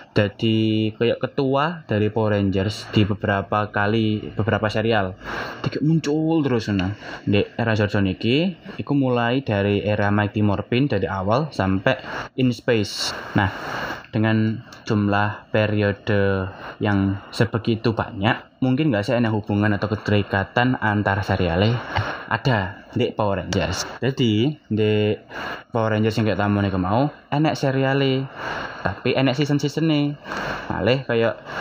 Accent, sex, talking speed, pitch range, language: native, male, 125 wpm, 105-130 Hz, Indonesian